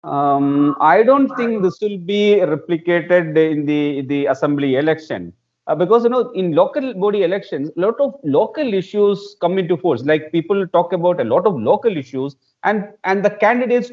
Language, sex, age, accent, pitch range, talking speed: English, male, 40-59, Indian, 160-210 Hz, 185 wpm